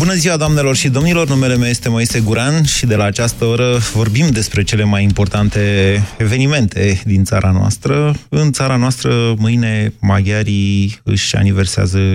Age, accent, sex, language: 20-39, native, male, Romanian